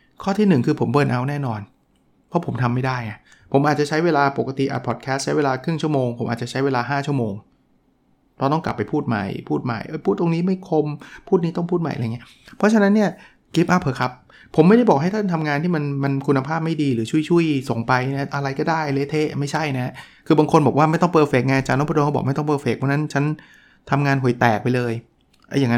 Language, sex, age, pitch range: Thai, male, 20-39, 125-155 Hz